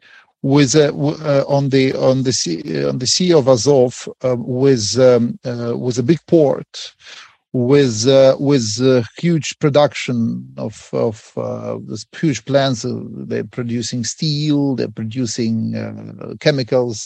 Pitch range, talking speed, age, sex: 120-145 Hz, 150 wpm, 40-59, male